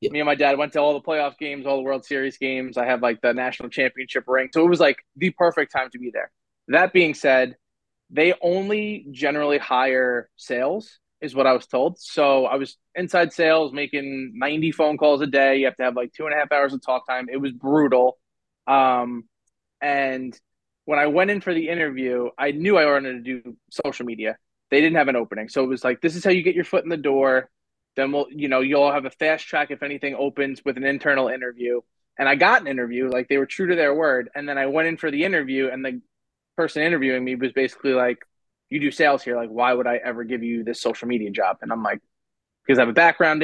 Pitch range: 125-150 Hz